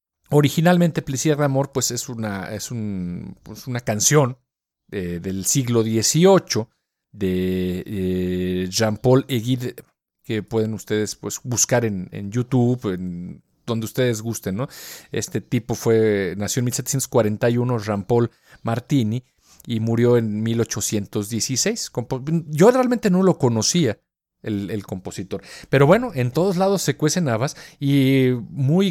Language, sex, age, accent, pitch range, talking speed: Spanish, male, 40-59, Mexican, 105-140 Hz, 135 wpm